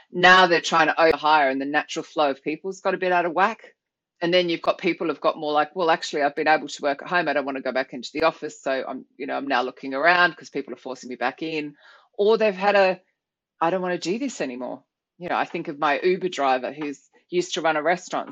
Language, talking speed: English, 275 wpm